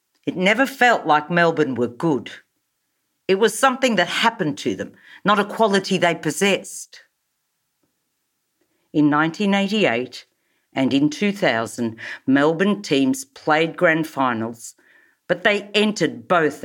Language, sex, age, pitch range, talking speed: English, female, 50-69, 140-210 Hz, 120 wpm